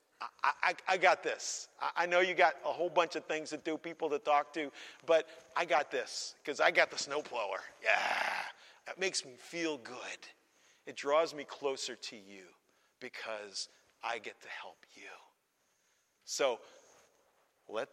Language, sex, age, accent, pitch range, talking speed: English, male, 50-69, American, 155-220 Hz, 165 wpm